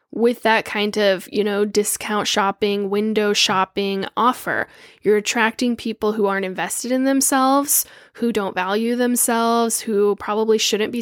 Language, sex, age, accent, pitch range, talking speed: English, female, 10-29, American, 205-255 Hz, 145 wpm